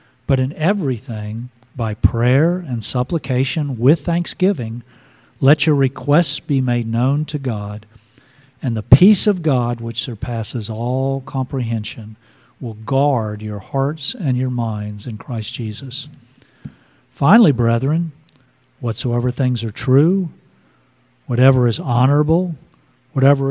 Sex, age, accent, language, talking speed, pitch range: male, 50-69, American, English, 115 wpm, 115-145 Hz